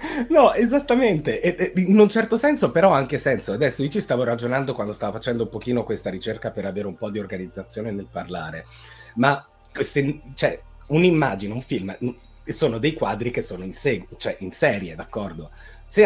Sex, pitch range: male, 105-150 Hz